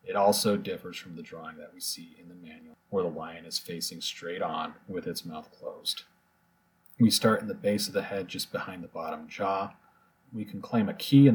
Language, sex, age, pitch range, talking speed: English, male, 30-49, 95-130 Hz, 220 wpm